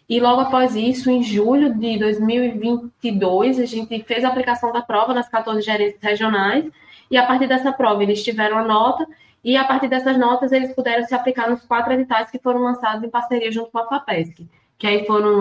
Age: 20-39